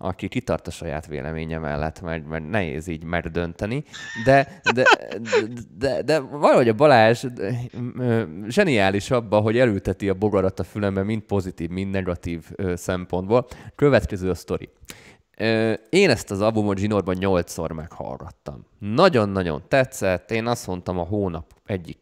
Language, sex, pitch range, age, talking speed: Hungarian, male, 90-115 Hz, 20-39, 145 wpm